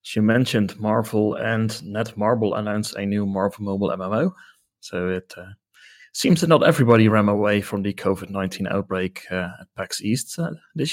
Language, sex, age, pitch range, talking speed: English, male, 30-49, 95-115 Hz, 165 wpm